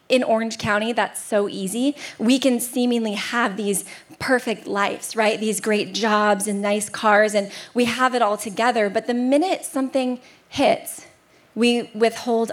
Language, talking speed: English, 160 wpm